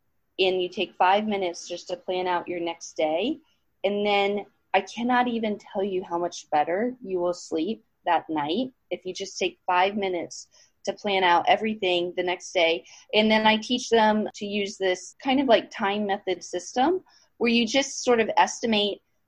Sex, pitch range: female, 175-220 Hz